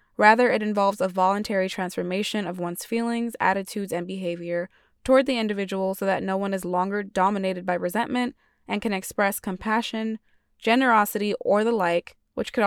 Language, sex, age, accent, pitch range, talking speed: English, female, 20-39, American, 185-225 Hz, 160 wpm